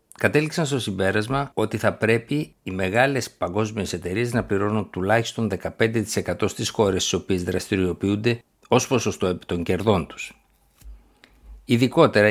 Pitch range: 95-115 Hz